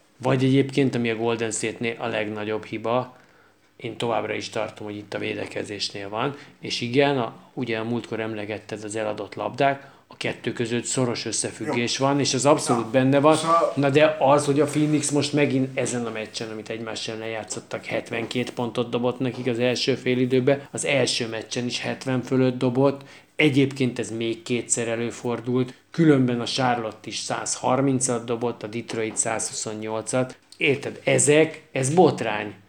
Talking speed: 155 wpm